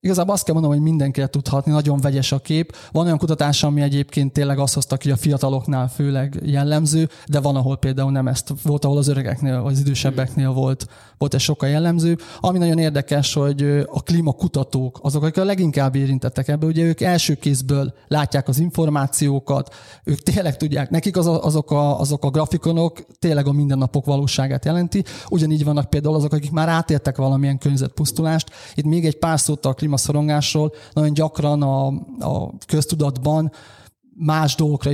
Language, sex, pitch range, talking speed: Hungarian, male, 140-155 Hz, 170 wpm